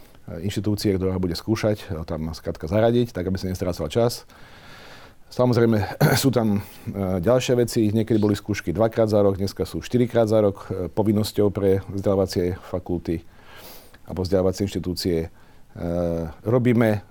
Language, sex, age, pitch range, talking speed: Slovak, male, 40-59, 95-115 Hz, 125 wpm